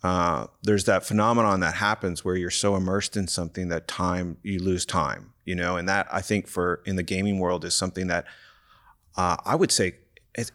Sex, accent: male, American